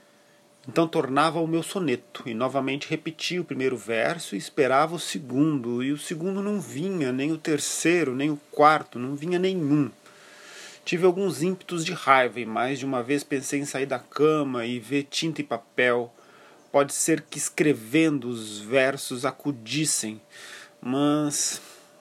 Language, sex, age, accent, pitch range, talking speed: Portuguese, male, 40-59, Brazilian, 125-155 Hz, 155 wpm